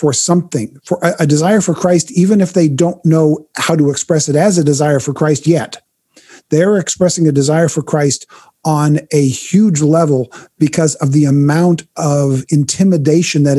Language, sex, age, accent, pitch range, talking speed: English, male, 40-59, American, 135-165 Hz, 170 wpm